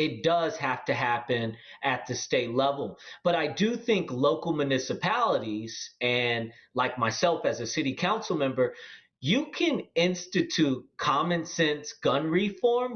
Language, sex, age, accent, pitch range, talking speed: English, male, 30-49, American, 135-175 Hz, 140 wpm